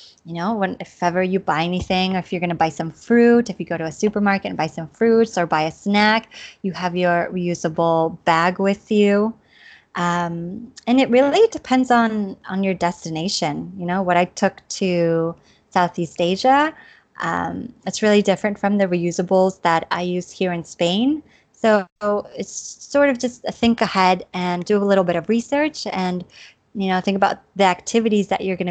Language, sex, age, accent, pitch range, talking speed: English, female, 20-39, American, 175-200 Hz, 190 wpm